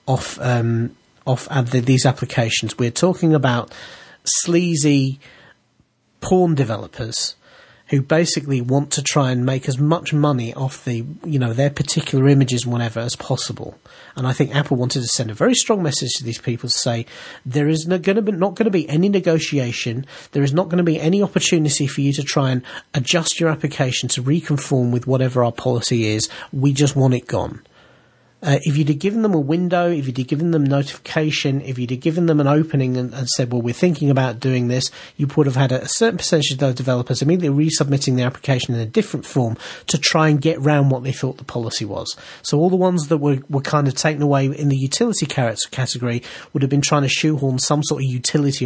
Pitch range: 125-155 Hz